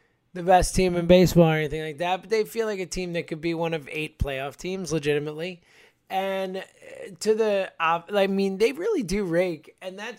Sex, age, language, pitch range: male, 20-39, English, 160-215 Hz